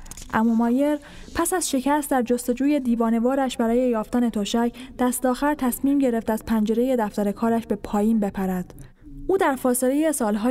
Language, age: Persian, 10-29